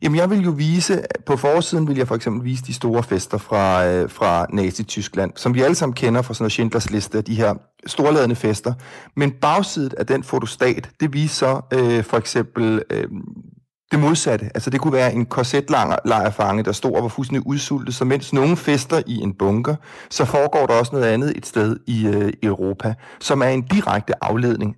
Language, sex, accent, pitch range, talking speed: Danish, male, native, 110-150 Hz, 195 wpm